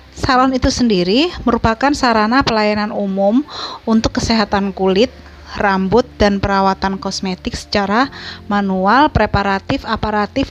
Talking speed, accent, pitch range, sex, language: 105 wpm, native, 190-230 Hz, female, Indonesian